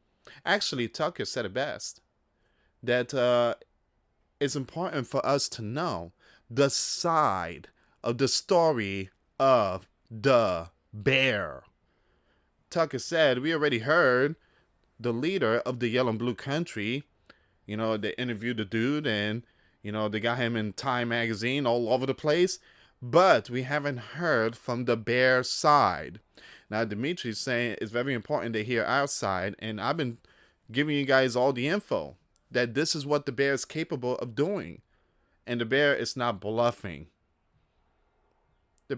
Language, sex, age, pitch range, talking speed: English, male, 20-39, 110-135 Hz, 150 wpm